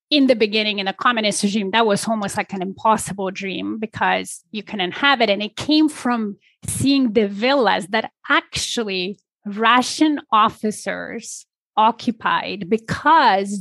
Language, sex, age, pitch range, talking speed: English, female, 30-49, 195-245 Hz, 140 wpm